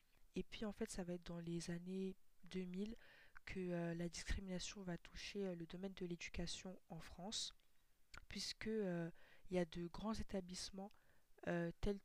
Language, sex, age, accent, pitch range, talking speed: French, female, 20-39, French, 175-195 Hz, 165 wpm